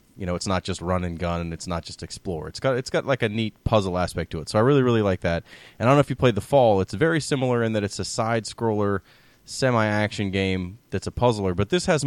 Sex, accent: male, American